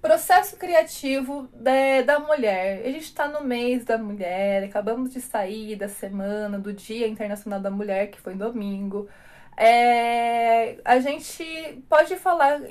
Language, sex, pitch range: Portuguese, female, 215-280 Hz